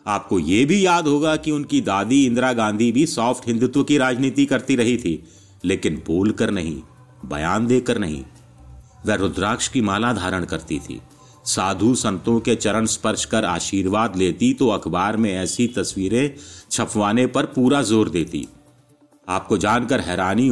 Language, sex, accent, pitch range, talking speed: Hindi, male, native, 100-135 Hz, 150 wpm